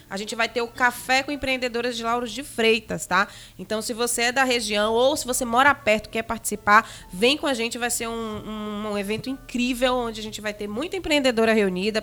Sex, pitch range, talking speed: female, 210-255 Hz, 225 wpm